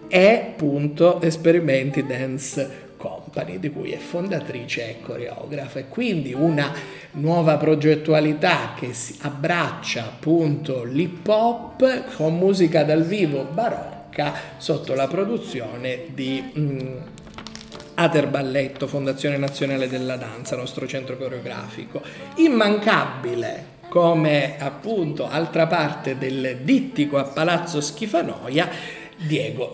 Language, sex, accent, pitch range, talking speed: Italian, male, native, 135-175 Hz, 105 wpm